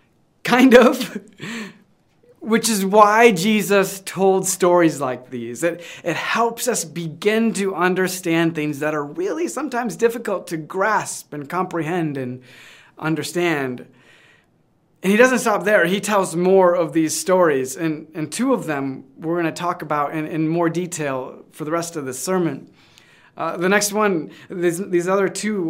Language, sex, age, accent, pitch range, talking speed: English, male, 30-49, American, 155-205 Hz, 160 wpm